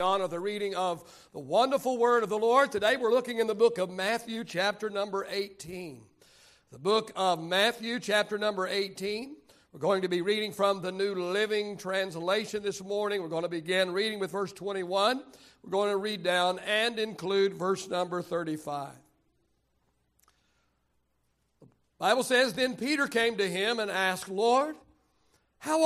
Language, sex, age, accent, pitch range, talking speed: English, male, 60-79, American, 180-215 Hz, 165 wpm